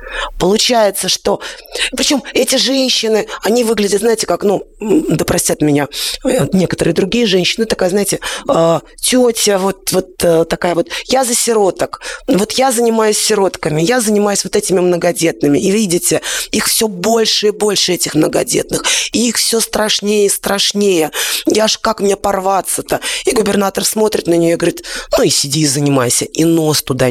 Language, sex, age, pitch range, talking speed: Russian, female, 20-39, 170-220 Hz, 155 wpm